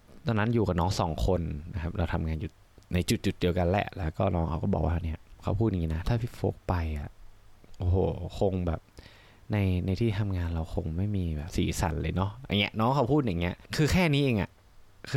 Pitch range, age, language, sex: 90-120 Hz, 20-39, Thai, male